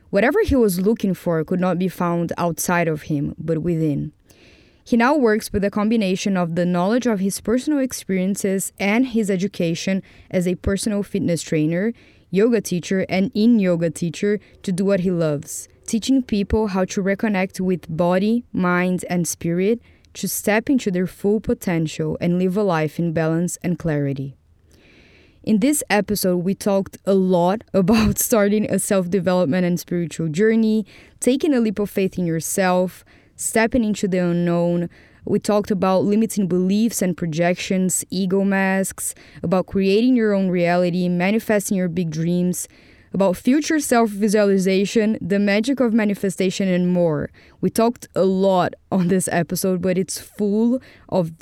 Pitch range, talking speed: 175-210 Hz, 155 wpm